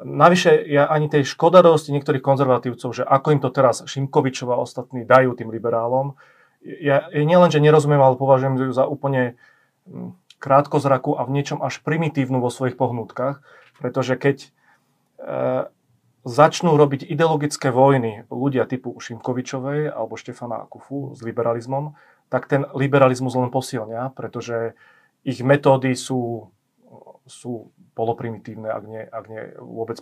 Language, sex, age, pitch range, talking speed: Slovak, male, 30-49, 120-140 Hz, 135 wpm